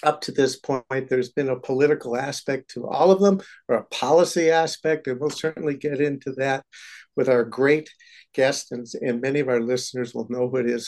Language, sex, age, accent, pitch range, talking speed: English, male, 60-79, American, 125-155 Hz, 210 wpm